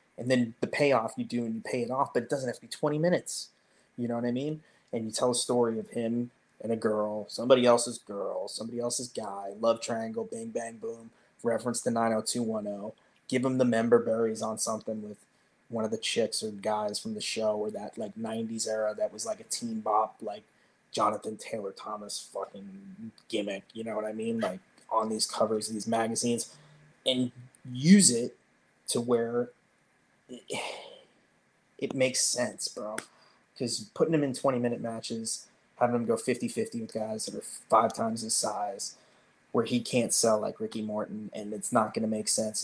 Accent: American